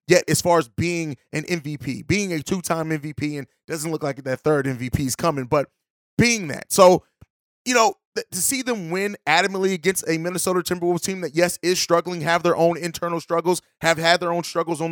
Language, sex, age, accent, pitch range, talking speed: English, male, 30-49, American, 155-185 Hz, 210 wpm